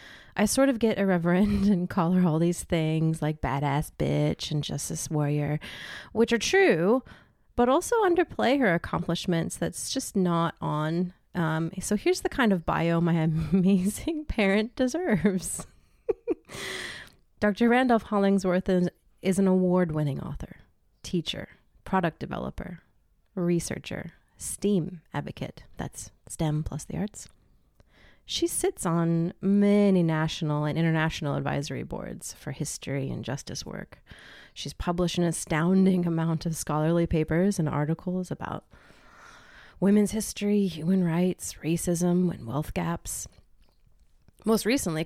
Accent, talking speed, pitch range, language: American, 125 wpm, 160-200 Hz, English